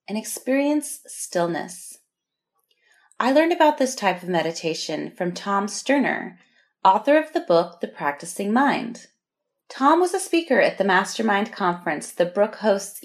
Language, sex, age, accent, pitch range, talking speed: English, female, 30-49, American, 170-275 Hz, 145 wpm